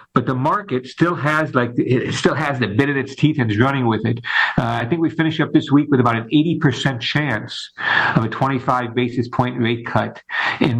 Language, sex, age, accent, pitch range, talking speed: English, male, 50-69, American, 120-155 Hz, 205 wpm